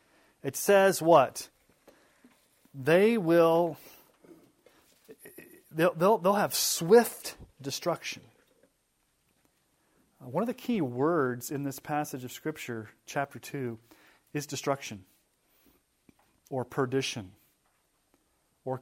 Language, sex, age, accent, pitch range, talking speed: English, male, 30-49, American, 125-150 Hz, 85 wpm